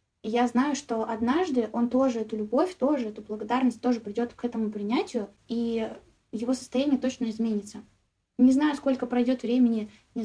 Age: 20-39